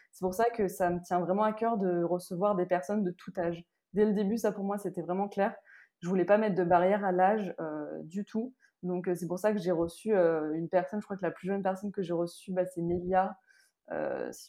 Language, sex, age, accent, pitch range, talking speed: French, female, 20-39, French, 175-200 Hz, 265 wpm